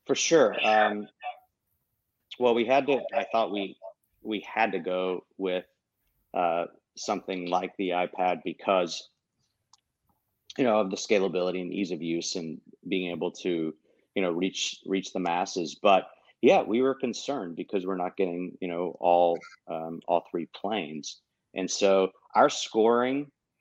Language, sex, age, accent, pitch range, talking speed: English, male, 30-49, American, 90-105 Hz, 150 wpm